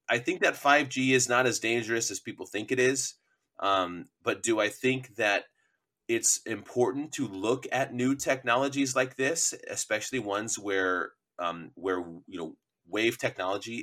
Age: 30-49